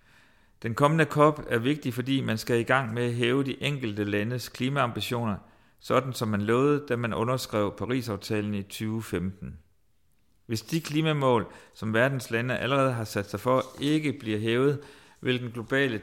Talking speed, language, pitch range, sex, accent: 165 wpm, Danish, 105-135 Hz, male, native